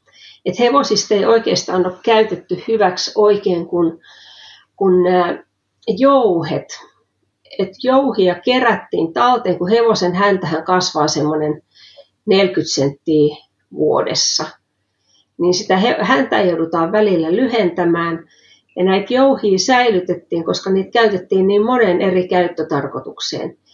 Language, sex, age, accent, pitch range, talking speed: Finnish, female, 40-59, native, 175-220 Hz, 100 wpm